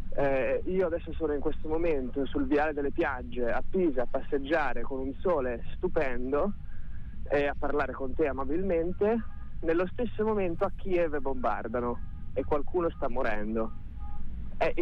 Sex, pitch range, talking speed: male, 125-185 Hz, 145 wpm